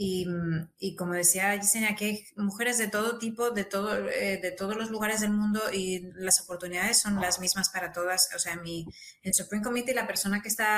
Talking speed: 210 wpm